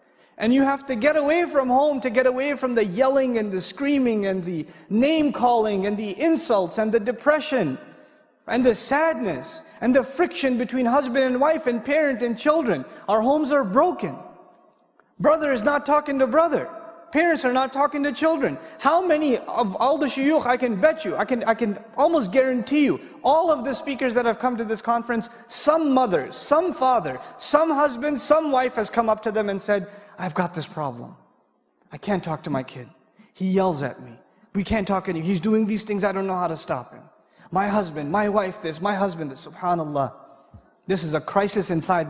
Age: 30-49